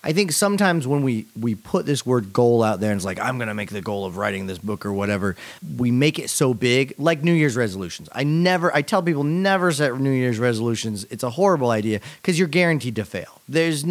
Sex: male